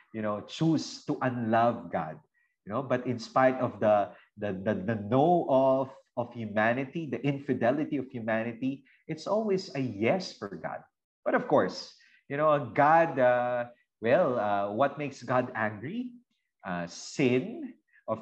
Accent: native